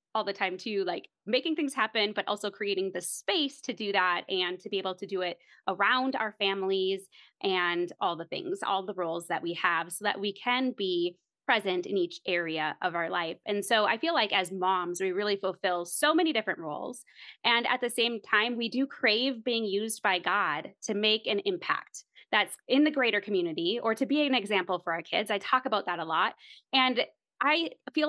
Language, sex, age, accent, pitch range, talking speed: English, female, 20-39, American, 190-265 Hz, 215 wpm